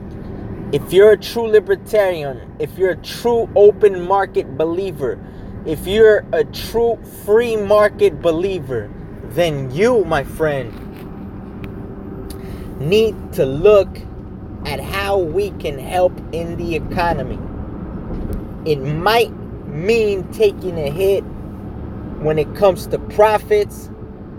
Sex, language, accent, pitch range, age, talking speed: male, English, American, 140-205 Hz, 20-39, 110 wpm